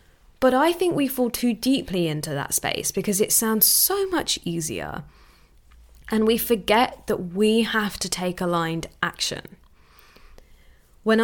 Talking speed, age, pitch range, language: 145 wpm, 10-29, 170-235 Hz, English